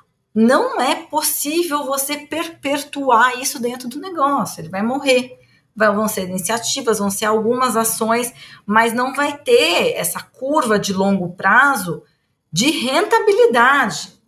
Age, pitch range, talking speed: 30-49, 180-255 Hz, 125 wpm